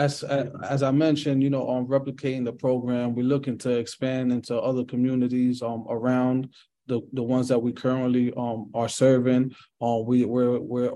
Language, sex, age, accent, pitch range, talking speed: English, male, 20-39, American, 115-130 Hz, 185 wpm